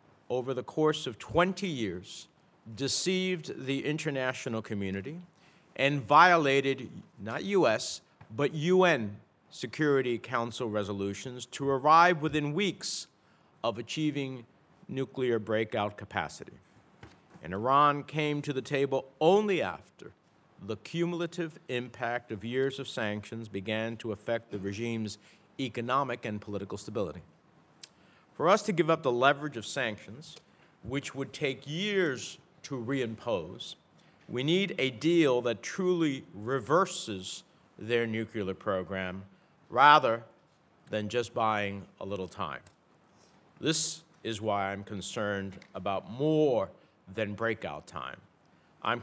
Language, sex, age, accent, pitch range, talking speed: English, male, 50-69, American, 110-150 Hz, 115 wpm